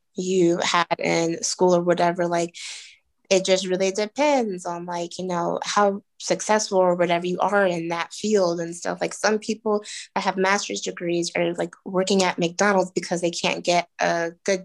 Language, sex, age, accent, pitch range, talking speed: English, female, 20-39, American, 170-195 Hz, 180 wpm